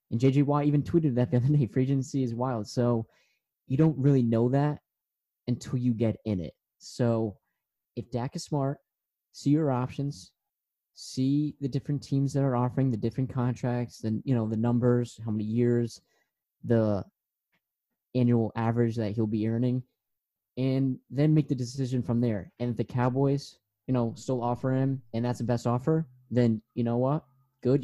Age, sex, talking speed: 20-39, male, 180 wpm